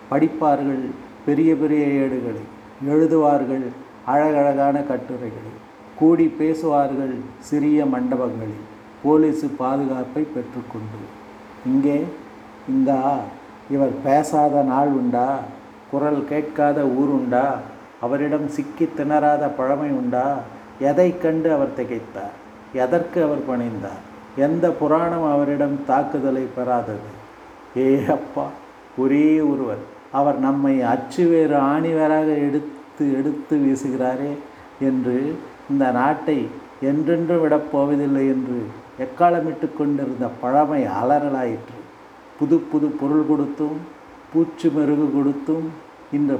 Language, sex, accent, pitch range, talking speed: Tamil, male, native, 125-155 Hz, 85 wpm